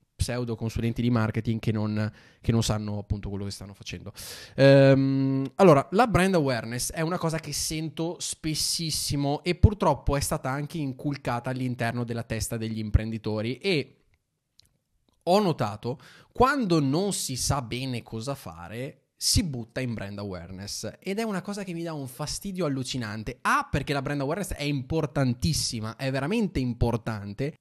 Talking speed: 155 wpm